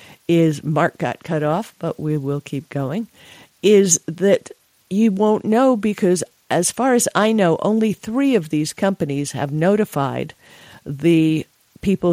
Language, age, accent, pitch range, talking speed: English, 50-69, American, 150-200 Hz, 150 wpm